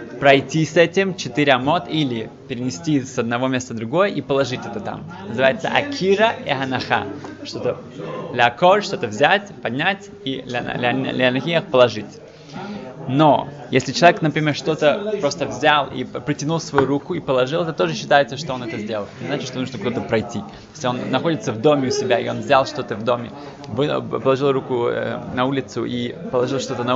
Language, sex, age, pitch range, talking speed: Russian, male, 20-39, 130-160 Hz, 180 wpm